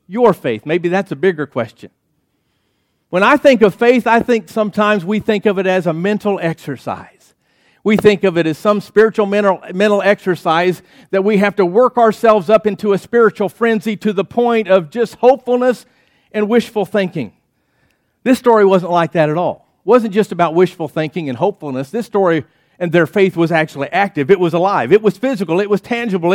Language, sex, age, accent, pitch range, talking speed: English, male, 50-69, American, 185-230 Hz, 195 wpm